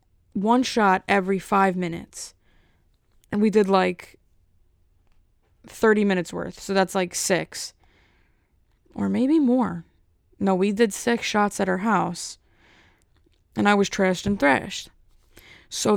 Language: English